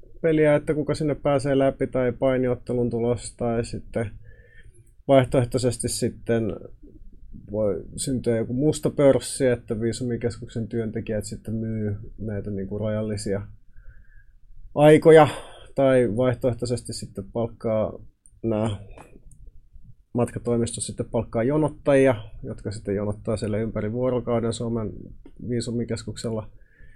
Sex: male